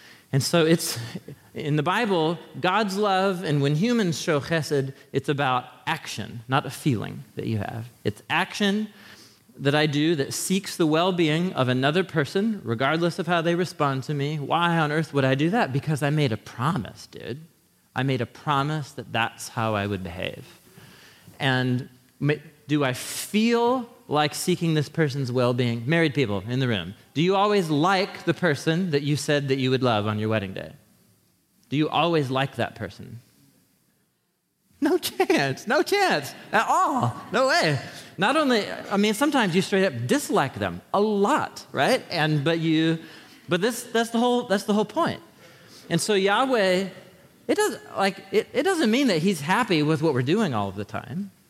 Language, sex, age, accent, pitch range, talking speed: English, male, 30-49, American, 135-195 Hz, 180 wpm